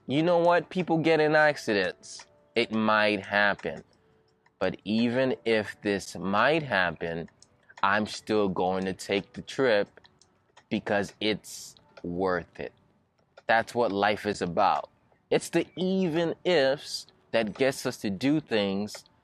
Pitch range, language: 95-120 Hz, English